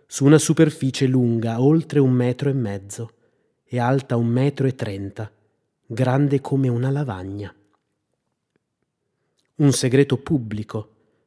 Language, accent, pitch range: Italian, native, 110-135 Hz